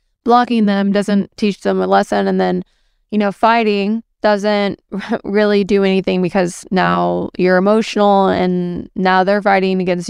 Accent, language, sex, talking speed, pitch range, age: American, English, female, 150 wpm, 180-215 Hz, 20-39